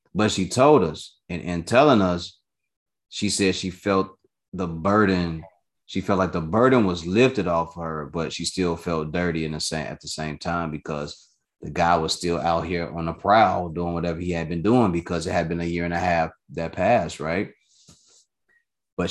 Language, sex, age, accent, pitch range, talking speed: English, male, 20-39, American, 85-100 Hz, 200 wpm